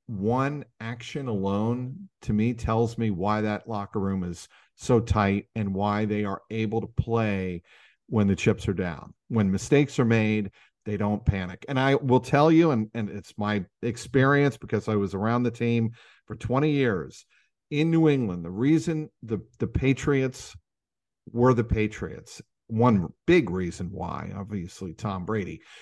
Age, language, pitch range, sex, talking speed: 50-69, English, 100-125 Hz, male, 165 wpm